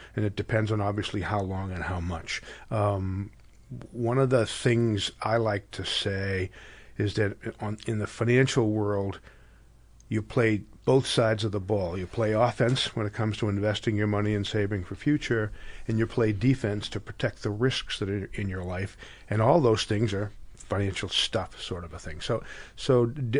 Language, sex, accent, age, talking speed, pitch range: English, male, American, 50-69, 185 wpm, 105-120 Hz